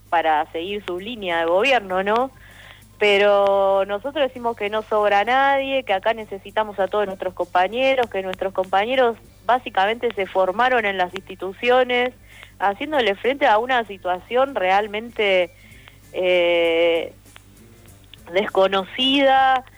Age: 20-39